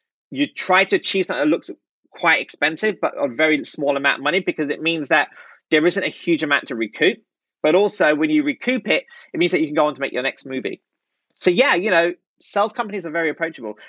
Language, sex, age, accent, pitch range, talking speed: English, male, 30-49, British, 155-230 Hz, 235 wpm